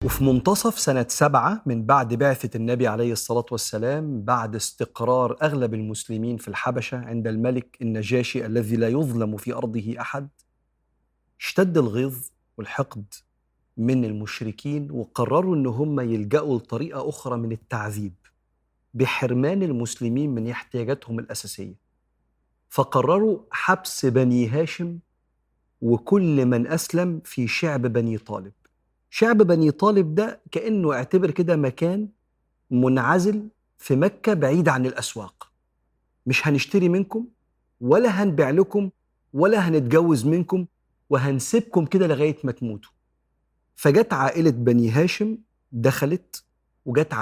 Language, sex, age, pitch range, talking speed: Arabic, male, 40-59, 115-165 Hz, 115 wpm